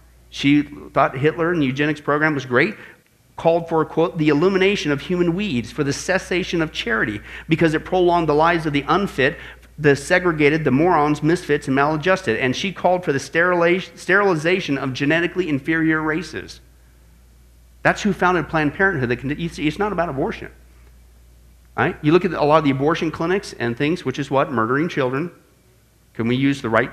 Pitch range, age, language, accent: 120-175 Hz, 50-69, English, American